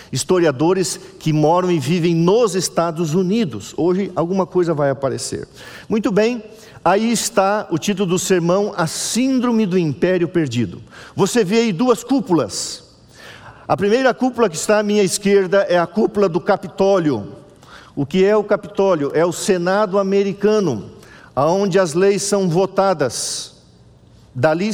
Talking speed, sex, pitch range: 145 wpm, male, 160-200 Hz